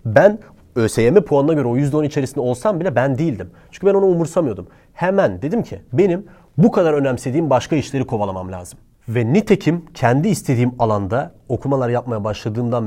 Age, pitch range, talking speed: 30-49, 105-155 Hz, 160 wpm